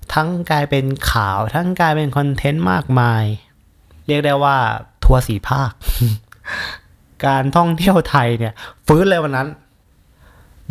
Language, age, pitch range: Thai, 20-39, 110-140 Hz